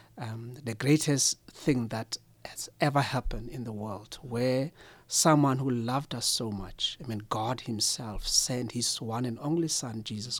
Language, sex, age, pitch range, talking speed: English, male, 60-79, 110-130 Hz, 165 wpm